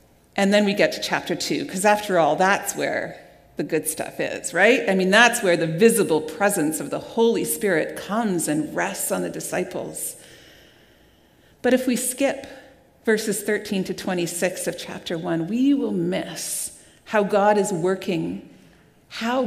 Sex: female